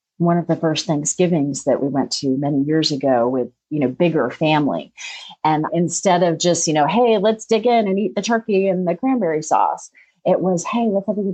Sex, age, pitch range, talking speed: female, 40-59, 145-220 Hz, 215 wpm